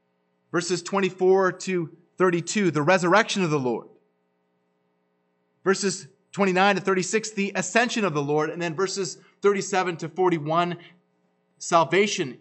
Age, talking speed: 30-49, 120 wpm